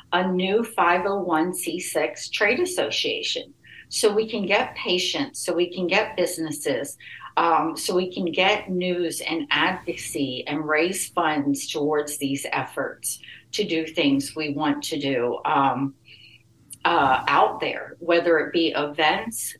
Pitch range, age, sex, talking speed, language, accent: 150-185 Hz, 50-69, female, 145 wpm, English, American